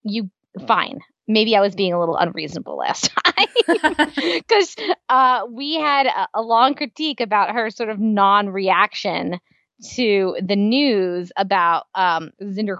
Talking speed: 135 wpm